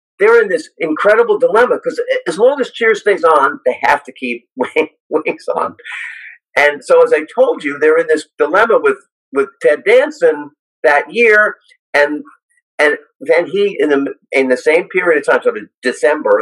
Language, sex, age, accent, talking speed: English, male, 50-69, American, 175 wpm